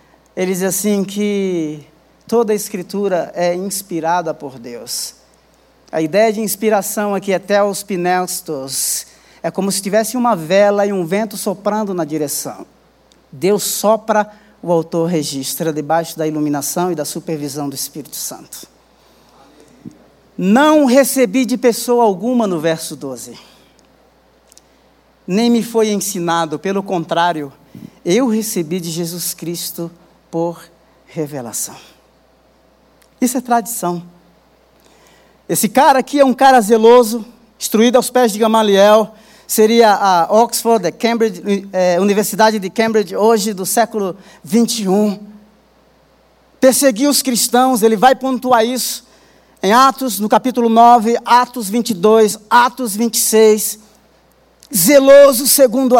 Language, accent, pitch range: Portuguese, Brazilian, 175-235 Hz